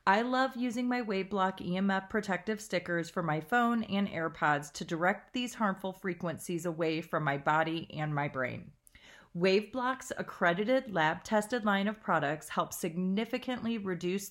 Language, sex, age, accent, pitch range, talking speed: English, female, 30-49, American, 170-215 Hz, 145 wpm